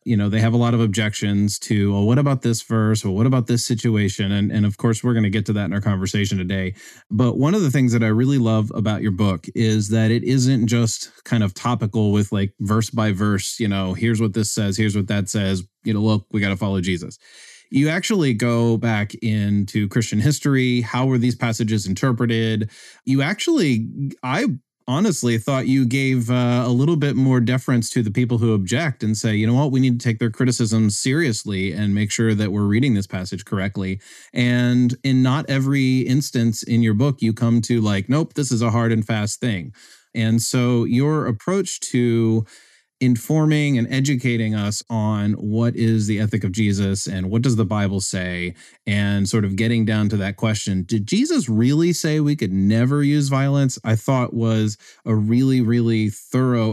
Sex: male